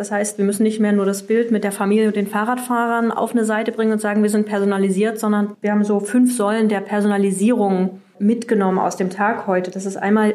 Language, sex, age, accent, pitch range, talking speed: German, female, 30-49, German, 195-215 Hz, 230 wpm